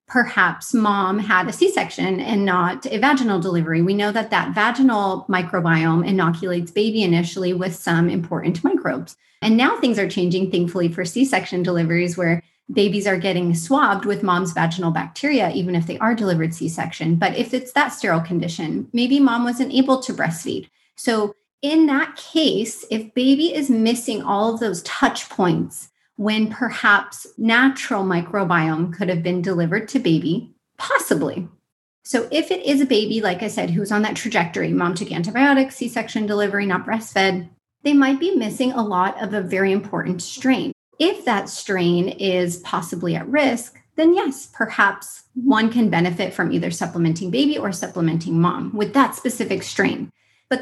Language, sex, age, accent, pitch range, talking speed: English, female, 30-49, American, 180-260 Hz, 165 wpm